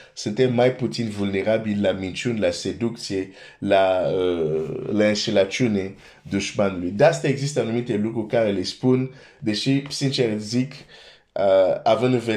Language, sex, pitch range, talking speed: Romanian, male, 100-120 Hz, 105 wpm